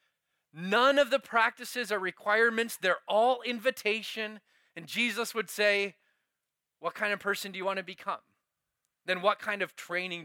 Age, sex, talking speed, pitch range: 20-39, male, 160 wpm, 185-240 Hz